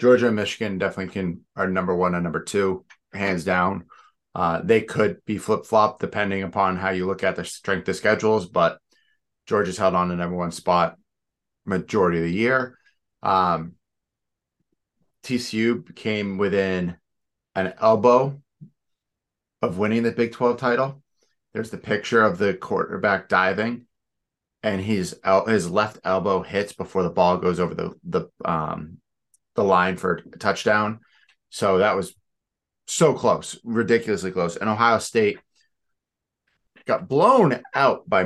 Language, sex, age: English, male, 30-49